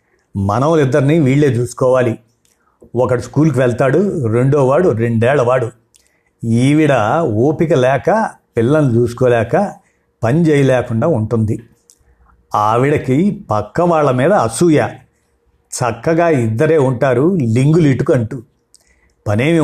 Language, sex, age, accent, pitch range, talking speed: Telugu, male, 50-69, native, 115-155 Hz, 90 wpm